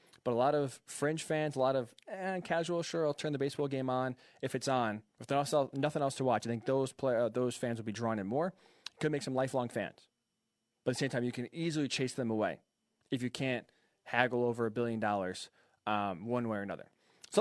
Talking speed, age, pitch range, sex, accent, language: 240 wpm, 20-39, 125-150 Hz, male, American, English